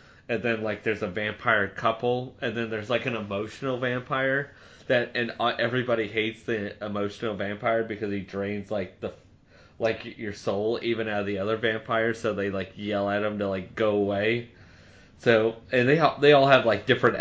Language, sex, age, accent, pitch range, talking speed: English, male, 20-39, American, 105-115 Hz, 185 wpm